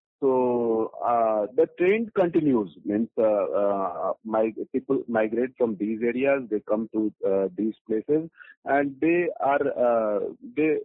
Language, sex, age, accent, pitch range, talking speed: Hindi, male, 50-69, native, 115-150 Hz, 140 wpm